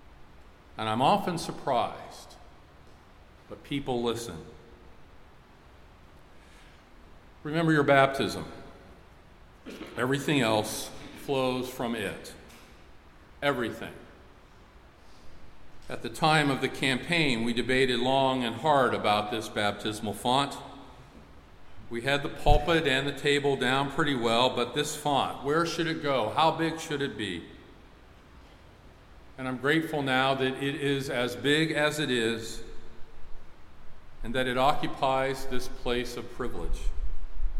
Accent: American